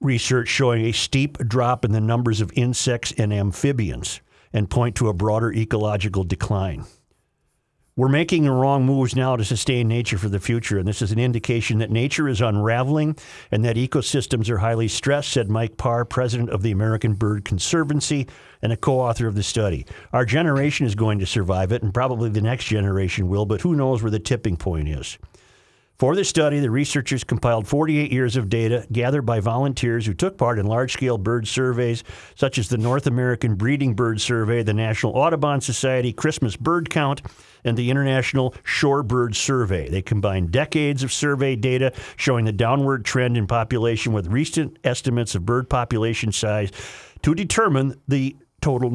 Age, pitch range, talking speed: 50-69, 110-130 Hz, 180 wpm